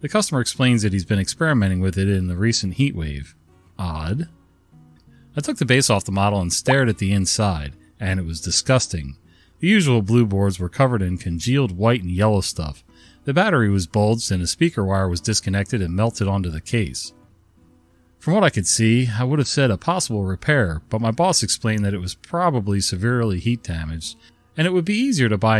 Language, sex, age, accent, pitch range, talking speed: English, male, 40-59, American, 90-130 Hz, 205 wpm